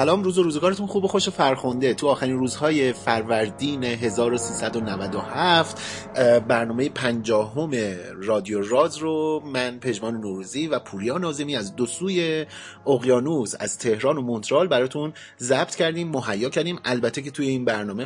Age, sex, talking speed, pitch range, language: 30-49, male, 135 wpm, 110-140 Hz, Persian